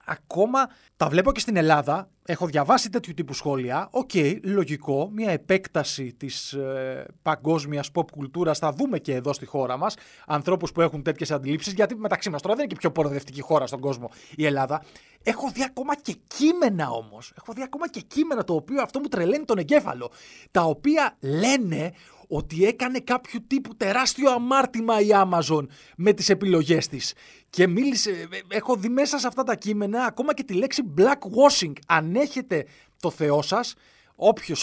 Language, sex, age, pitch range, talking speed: Greek, male, 30-49, 150-230 Hz, 170 wpm